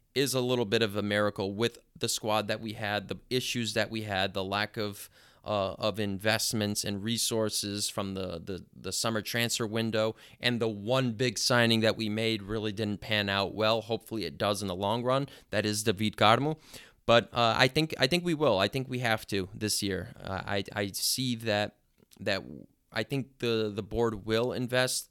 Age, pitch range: 20-39, 105-125 Hz